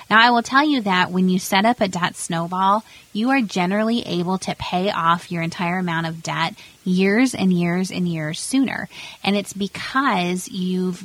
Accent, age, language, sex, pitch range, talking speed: American, 30-49, English, female, 165-195 Hz, 190 wpm